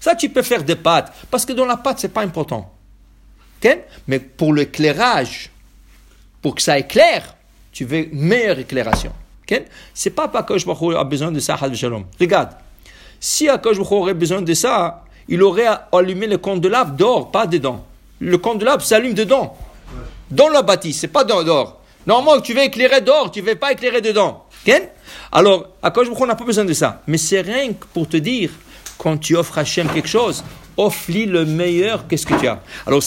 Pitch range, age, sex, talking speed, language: 155-225 Hz, 60-79, male, 200 wpm, English